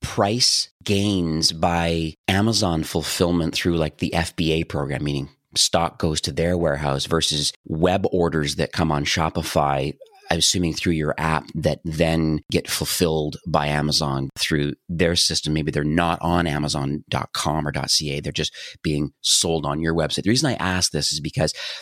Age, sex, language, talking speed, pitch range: 30-49, male, English, 160 wpm, 75-85 Hz